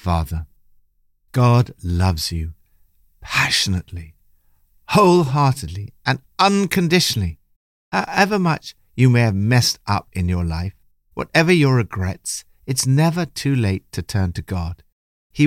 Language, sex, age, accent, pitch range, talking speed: English, male, 60-79, British, 85-135 Hz, 115 wpm